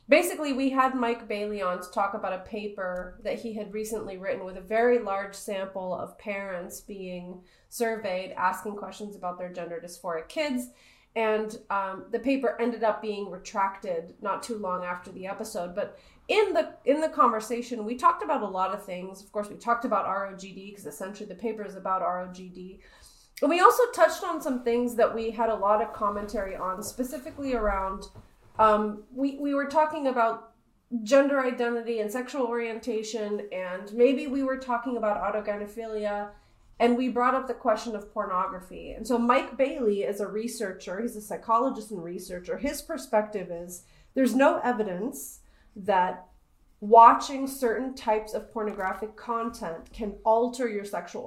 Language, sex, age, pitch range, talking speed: English, female, 30-49, 195-245 Hz, 170 wpm